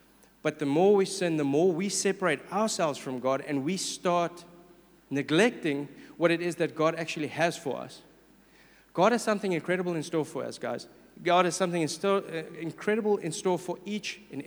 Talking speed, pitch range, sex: 185 wpm, 145-190 Hz, male